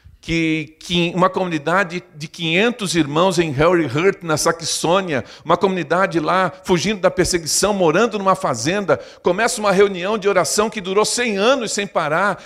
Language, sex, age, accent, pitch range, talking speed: Portuguese, male, 50-69, Brazilian, 125-210 Hz, 155 wpm